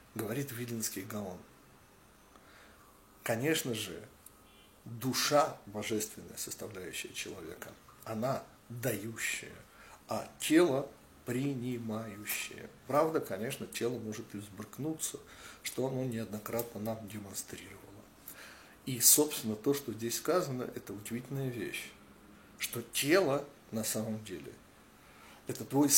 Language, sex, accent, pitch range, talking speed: Russian, male, native, 110-135 Hz, 95 wpm